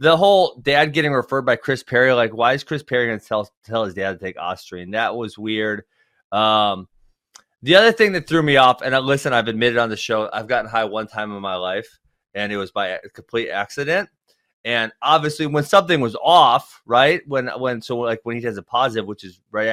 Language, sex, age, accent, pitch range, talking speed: English, male, 30-49, American, 110-150 Hz, 230 wpm